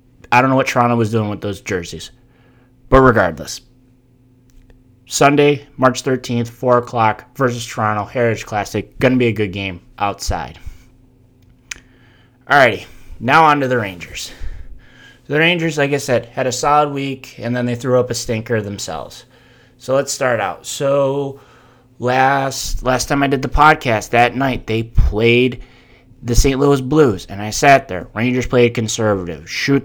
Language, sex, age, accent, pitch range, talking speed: English, male, 20-39, American, 120-135 Hz, 160 wpm